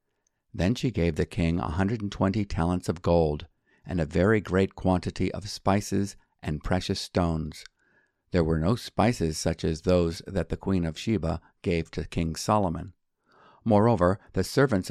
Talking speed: 165 wpm